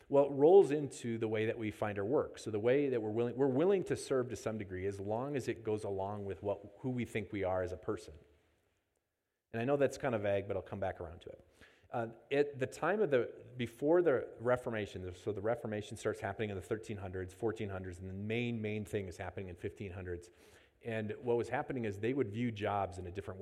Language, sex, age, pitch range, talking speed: English, male, 40-59, 95-120 Hz, 240 wpm